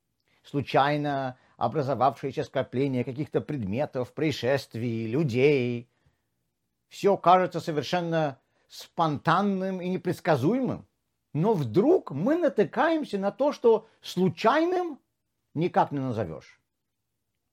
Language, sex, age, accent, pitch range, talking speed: Russian, male, 50-69, native, 145-215 Hz, 80 wpm